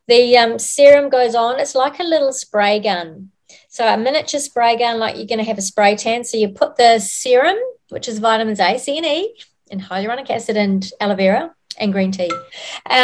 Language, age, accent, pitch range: English, 40-59, Australian, 200-260 Hz